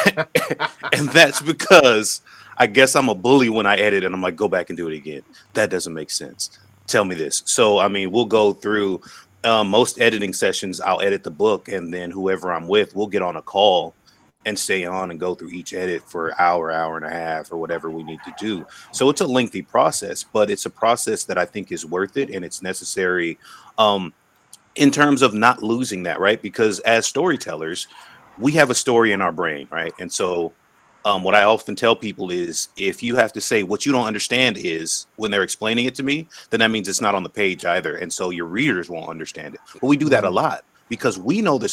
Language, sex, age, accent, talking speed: English, male, 30-49, American, 230 wpm